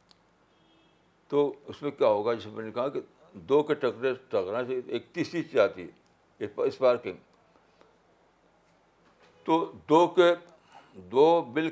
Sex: male